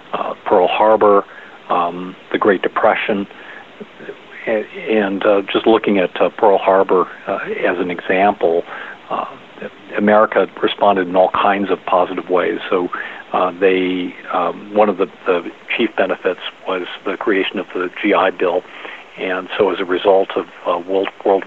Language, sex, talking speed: English, male, 155 wpm